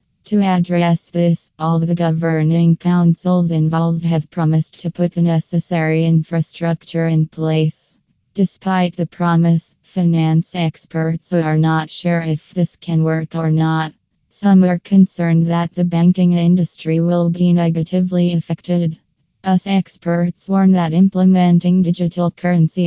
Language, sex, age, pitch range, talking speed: English, female, 20-39, 160-175 Hz, 130 wpm